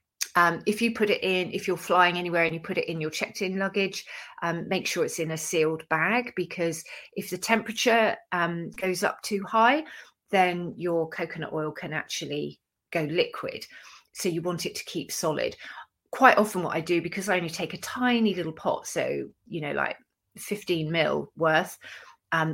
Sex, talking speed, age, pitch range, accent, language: female, 190 wpm, 30-49, 160-210 Hz, British, English